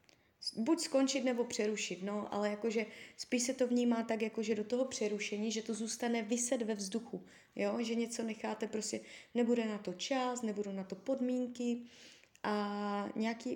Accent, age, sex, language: native, 20-39, female, Czech